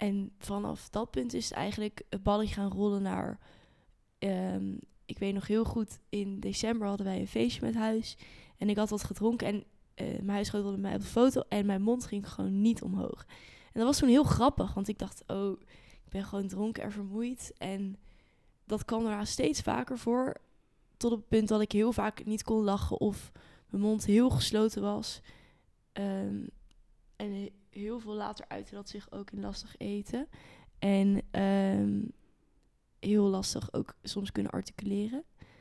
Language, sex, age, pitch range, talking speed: Dutch, female, 10-29, 195-215 Hz, 180 wpm